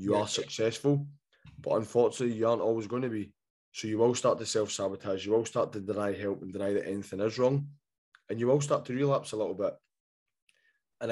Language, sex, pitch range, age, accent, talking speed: English, male, 105-120 Hz, 20-39, British, 210 wpm